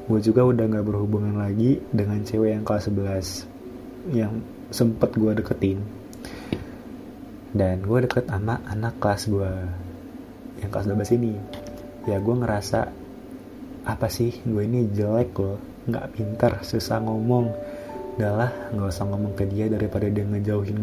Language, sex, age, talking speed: Indonesian, male, 20-39, 140 wpm